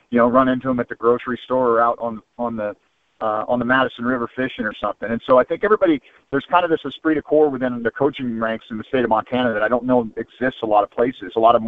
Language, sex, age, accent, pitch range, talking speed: English, male, 40-59, American, 120-150 Hz, 290 wpm